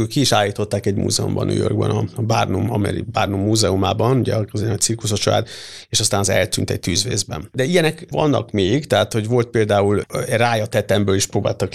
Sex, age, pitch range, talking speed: male, 50-69, 100-120 Hz, 165 wpm